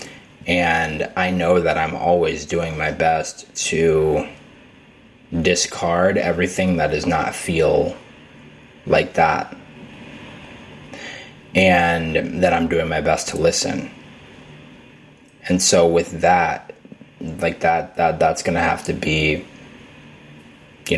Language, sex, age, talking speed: English, male, 20-39, 115 wpm